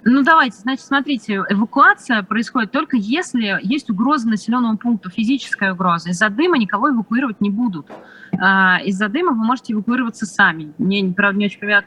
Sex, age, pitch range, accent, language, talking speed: female, 20-39, 190-235 Hz, native, Russian, 155 wpm